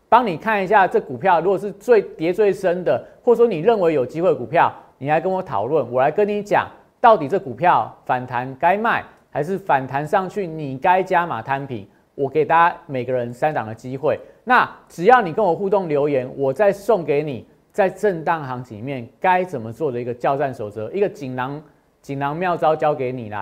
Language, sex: Chinese, male